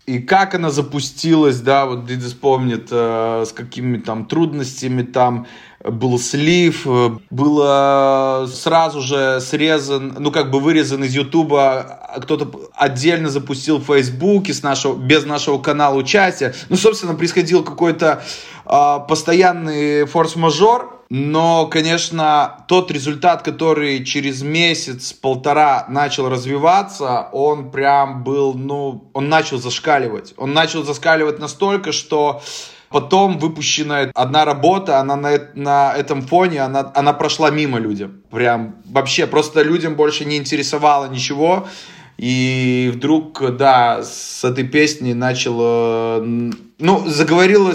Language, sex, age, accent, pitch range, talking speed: Russian, male, 20-39, native, 130-160 Hz, 120 wpm